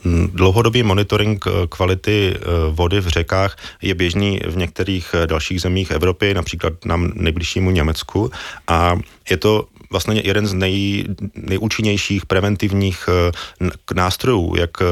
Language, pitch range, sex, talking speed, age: Czech, 85-100 Hz, male, 115 wpm, 30-49